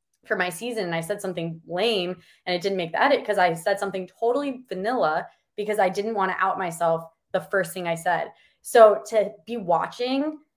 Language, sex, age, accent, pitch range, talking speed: English, female, 20-39, American, 165-220 Hz, 205 wpm